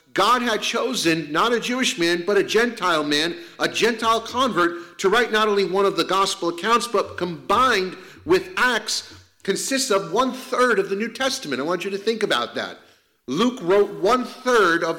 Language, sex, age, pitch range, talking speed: English, male, 50-69, 180-230 Hz, 180 wpm